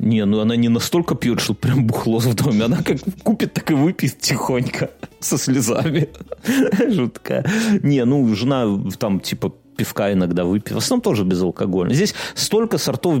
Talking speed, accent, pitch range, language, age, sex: 165 wpm, native, 105-145 Hz, Russian, 30-49, male